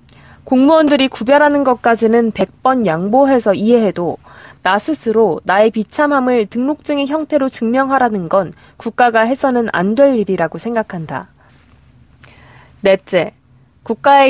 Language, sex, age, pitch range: Korean, female, 20-39, 195-270 Hz